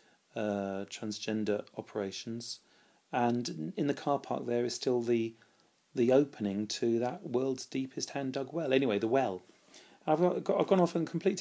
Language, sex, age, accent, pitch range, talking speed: English, male, 40-59, British, 105-125 Hz, 165 wpm